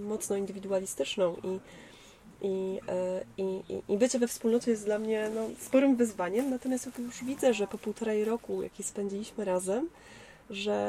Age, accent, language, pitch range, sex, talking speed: 20-39, native, Polish, 190-225 Hz, female, 150 wpm